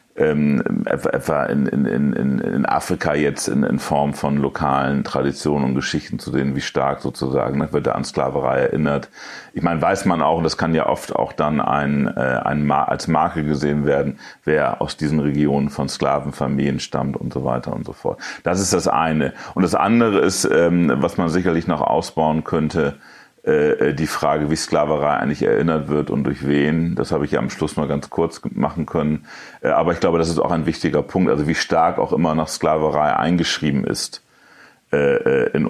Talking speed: 180 wpm